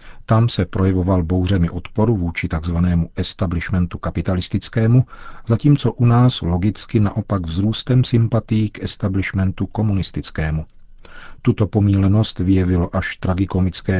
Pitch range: 90-105 Hz